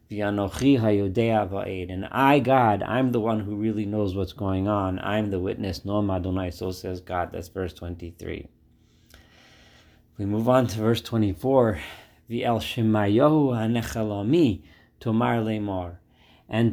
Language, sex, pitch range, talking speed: English, male, 100-130 Hz, 110 wpm